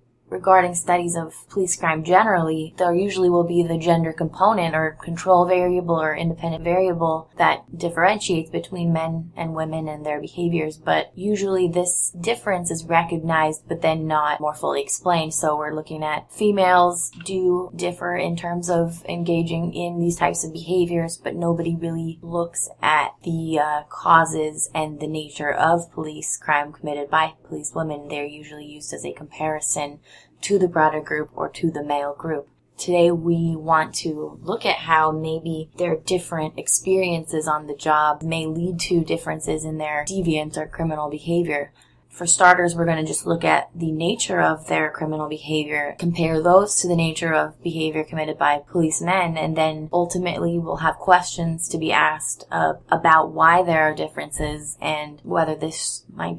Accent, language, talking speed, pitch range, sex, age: American, English, 165 wpm, 155-175 Hz, female, 20-39